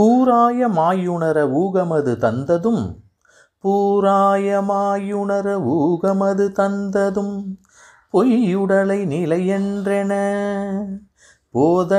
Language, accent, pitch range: Tamil, native, 195-250 Hz